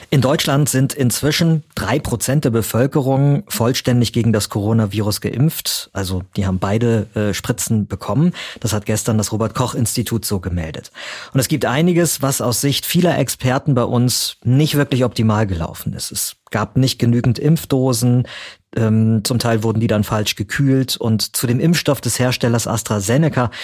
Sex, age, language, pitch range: male, 40-59, German, 110-145 Hz